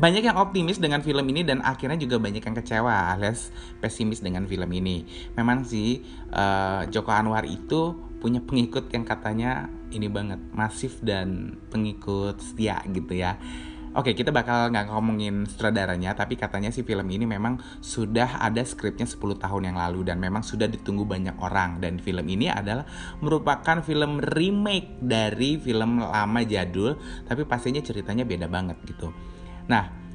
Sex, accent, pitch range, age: male, native, 95-125 Hz, 20-39